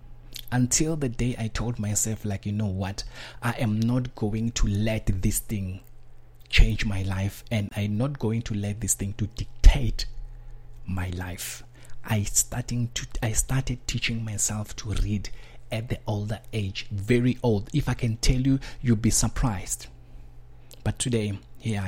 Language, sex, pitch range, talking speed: English, male, 105-120 Hz, 155 wpm